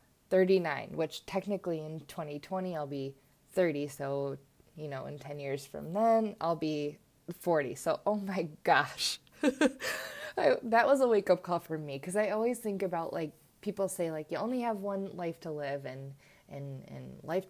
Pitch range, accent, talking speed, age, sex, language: 150-195 Hz, American, 170 wpm, 20-39, female, English